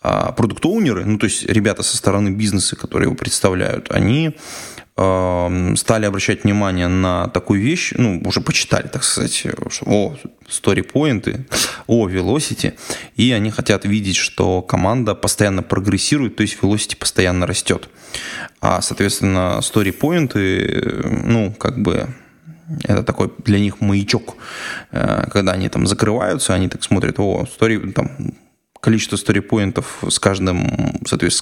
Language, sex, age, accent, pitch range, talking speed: Russian, male, 20-39, native, 95-115 Hz, 130 wpm